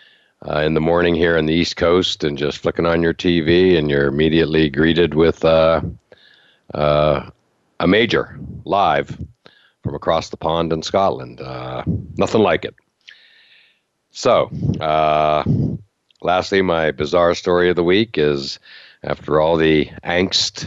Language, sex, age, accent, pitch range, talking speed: English, male, 60-79, American, 75-85 Hz, 140 wpm